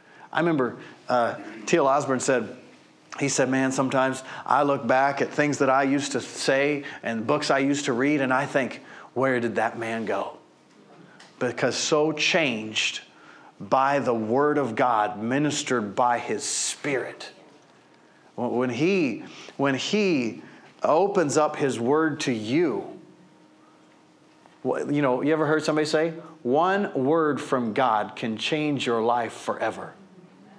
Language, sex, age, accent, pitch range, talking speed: English, male, 40-59, American, 120-150 Hz, 140 wpm